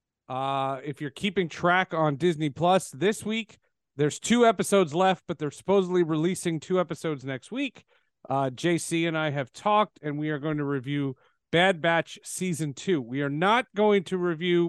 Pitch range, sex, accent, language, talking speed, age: 150-205 Hz, male, American, English, 180 wpm, 40-59